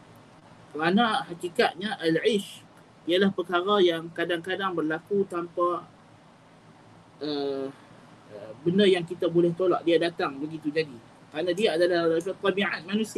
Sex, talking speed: male, 120 wpm